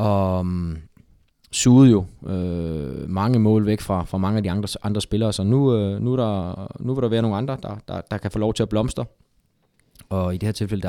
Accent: native